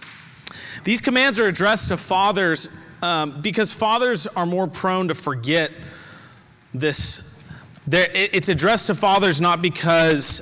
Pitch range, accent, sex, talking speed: 140-180 Hz, American, male, 120 wpm